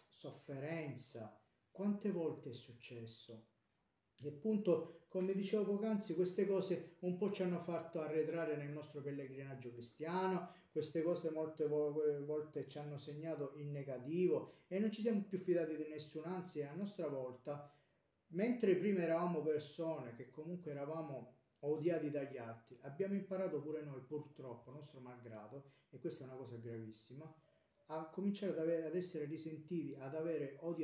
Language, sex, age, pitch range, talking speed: Italian, male, 40-59, 130-165 Hz, 150 wpm